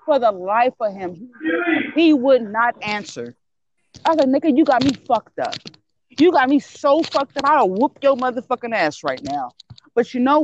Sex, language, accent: female, English, American